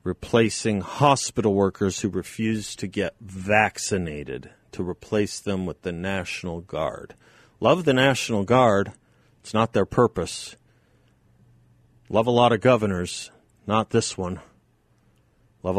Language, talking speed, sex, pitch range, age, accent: English, 120 wpm, male, 100-125 Hz, 40-59, American